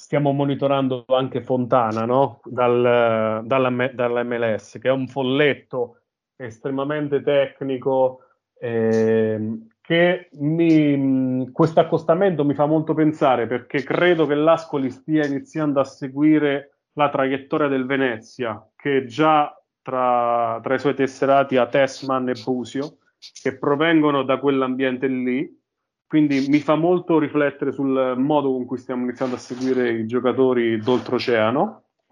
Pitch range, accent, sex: 120-145 Hz, native, male